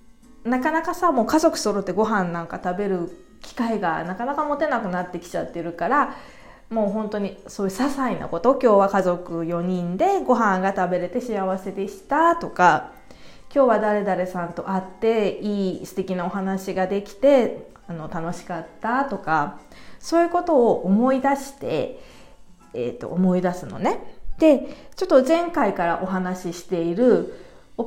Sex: female